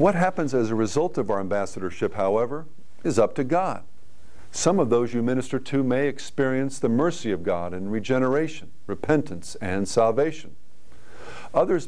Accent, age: American, 50-69